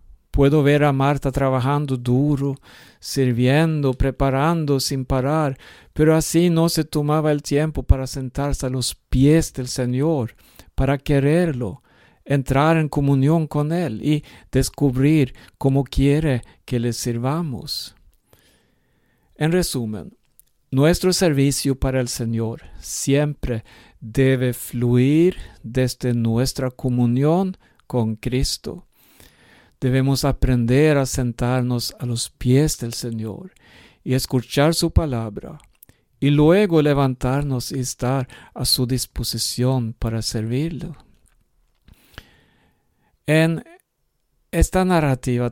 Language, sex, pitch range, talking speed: Swedish, male, 125-150 Hz, 105 wpm